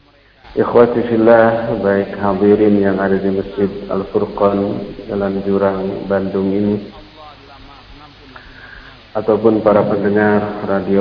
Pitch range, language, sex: 100-110 Hz, Indonesian, male